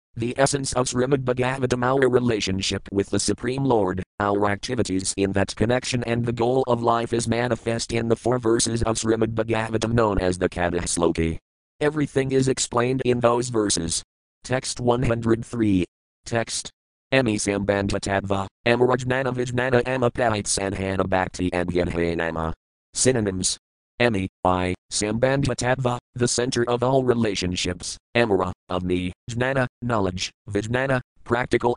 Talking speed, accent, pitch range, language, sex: 130 wpm, American, 95-125 Hz, English, male